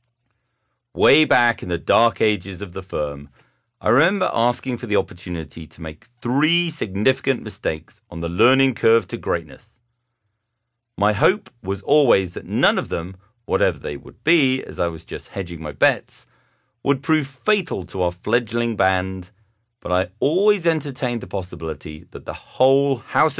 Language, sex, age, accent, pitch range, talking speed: English, male, 40-59, British, 90-125 Hz, 160 wpm